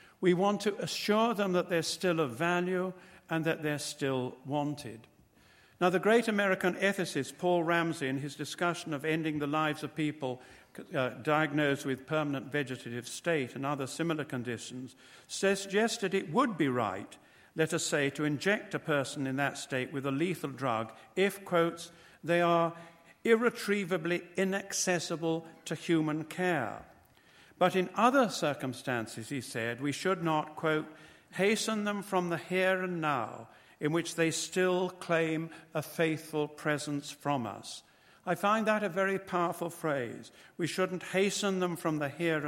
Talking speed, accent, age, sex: 155 wpm, British, 60-79, male